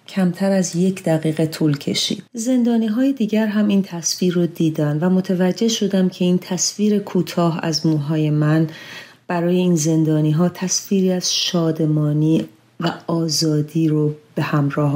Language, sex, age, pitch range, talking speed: Persian, female, 40-59, 160-195 Hz, 140 wpm